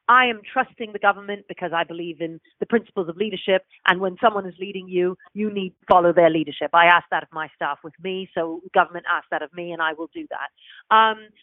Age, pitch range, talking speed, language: 40-59, 175-210 Hz, 235 wpm, English